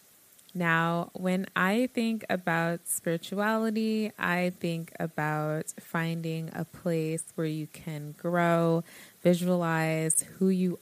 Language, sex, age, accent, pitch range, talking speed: English, female, 20-39, American, 155-185 Hz, 105 wpm